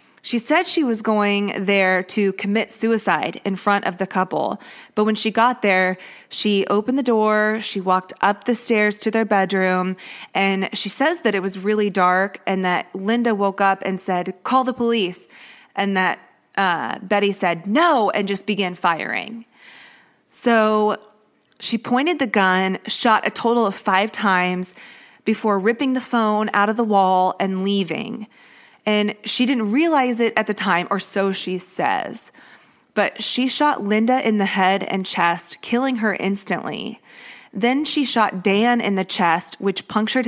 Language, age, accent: English, 20-39, American